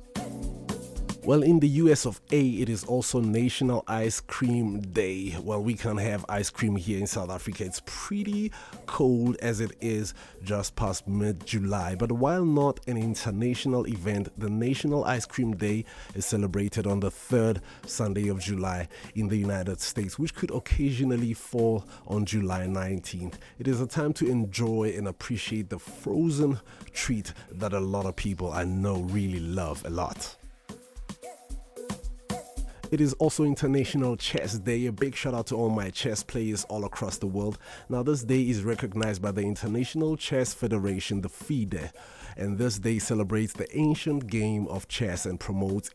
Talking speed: 165 wpm